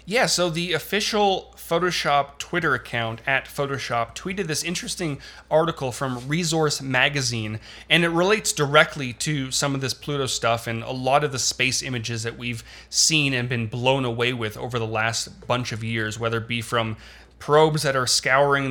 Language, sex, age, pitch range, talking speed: English, male, 30-49, 120-155 Hz, 175 wpm